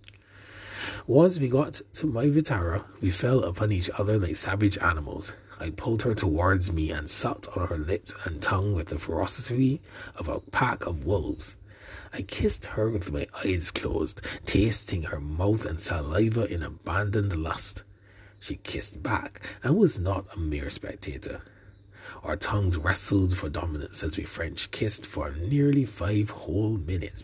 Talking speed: 160 wpm